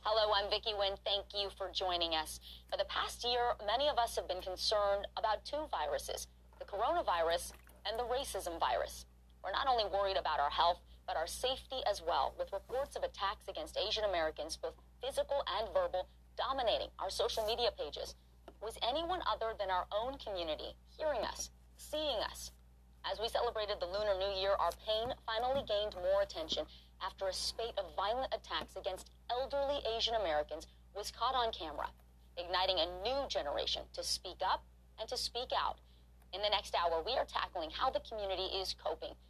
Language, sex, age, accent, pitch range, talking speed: English, female, 40-59, American, 175-240 Hz, 180 wpm